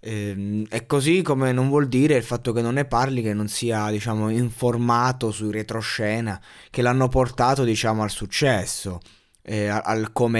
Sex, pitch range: male, 110-140 Hz